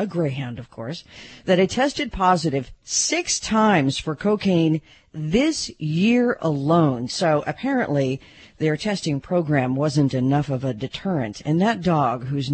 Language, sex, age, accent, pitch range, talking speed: English, female, 50-69, American, 140-190 Hz, 140 wpm